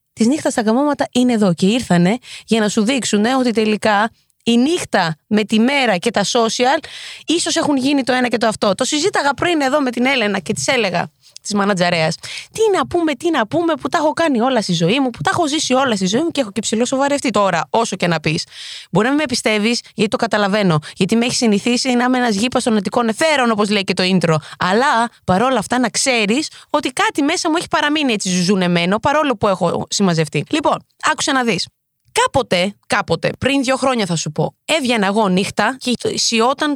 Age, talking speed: 20-39, 215 wpm